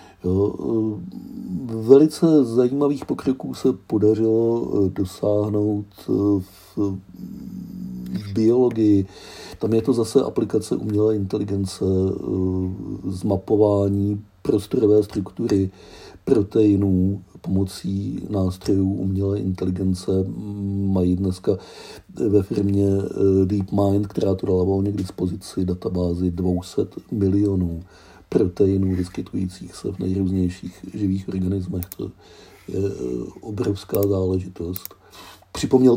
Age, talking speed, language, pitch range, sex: 50-69, 85 wpm, Czech, 95-110 Hz, male